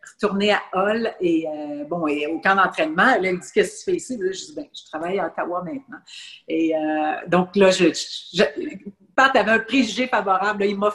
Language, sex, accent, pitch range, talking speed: French, female, Canadian, 180-220 Hz, 220 wpm